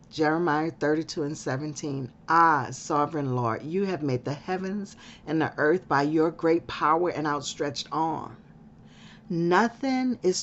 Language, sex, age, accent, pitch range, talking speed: English, female, 40-59, American, 150-190 Hz, 140 wpm